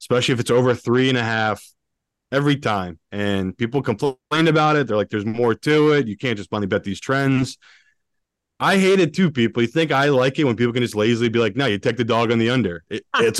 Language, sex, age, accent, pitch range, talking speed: English, male, 20-39, American, 105-135 Hz, 240 wpm